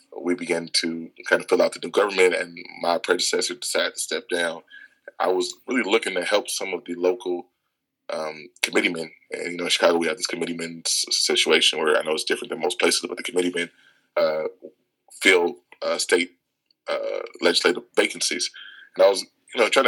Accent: American